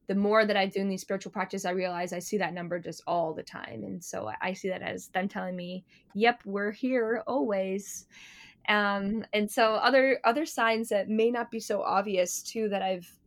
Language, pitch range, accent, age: English, 185-220 Hz, American, 10-29